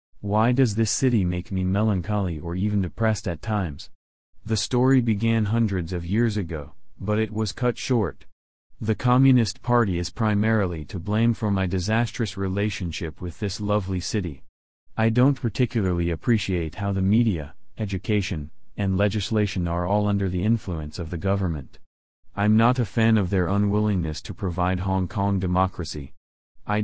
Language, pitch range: English, 90-110 Hz